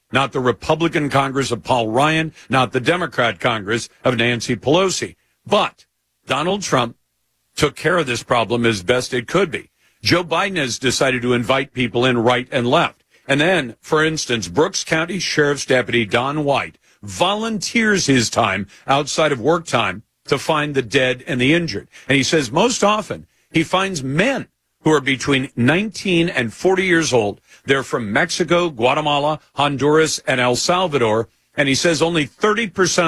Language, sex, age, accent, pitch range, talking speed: English, male, 50-69, American, 125-165 Hz, 165 wpm